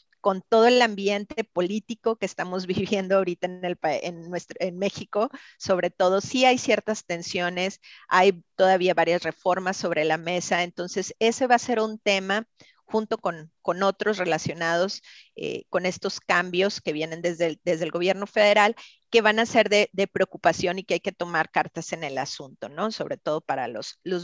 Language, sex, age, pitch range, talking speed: Spanish, female, 40-59, 180-225 Hz, 185 wpm